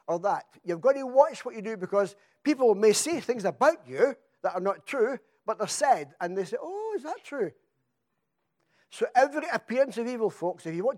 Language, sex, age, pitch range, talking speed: English, male, 60-79, 190-265 Hz, 215 wpm